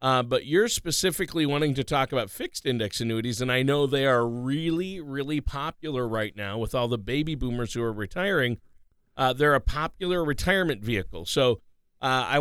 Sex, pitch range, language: male, 110-145 Hz, English